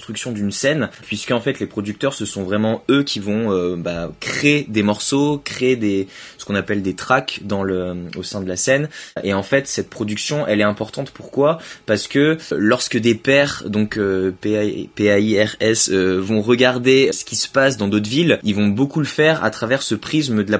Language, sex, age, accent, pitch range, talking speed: French, male, 20-39, French, 100-130 Hz, 205 wpm